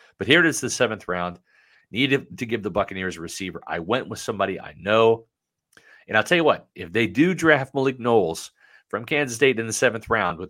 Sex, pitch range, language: male, 100-125 Hz, English